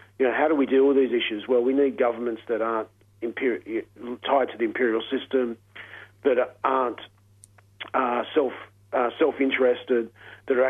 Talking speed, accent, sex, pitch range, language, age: 165 wpm, Australian, male, 105-130 Hz, English, 40-59